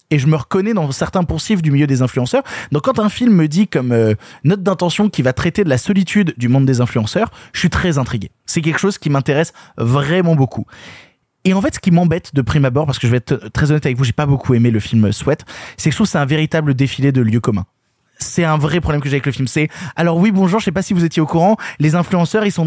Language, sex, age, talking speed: French, male, 20-39, 275 wpm